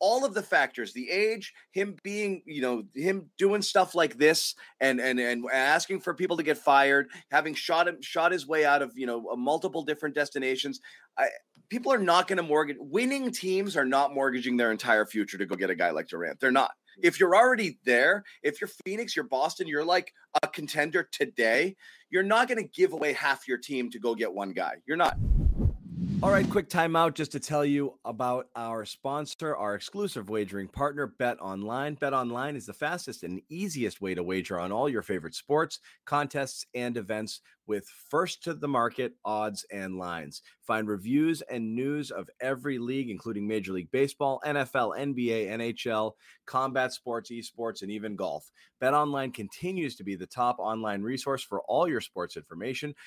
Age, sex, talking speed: 30-49, male, 190 wpm